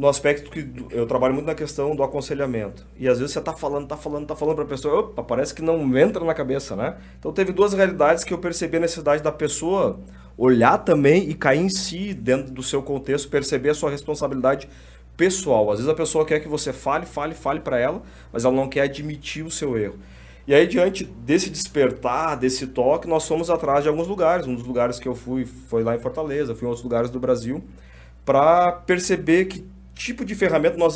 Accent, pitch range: Brazilian, 125-165 Hz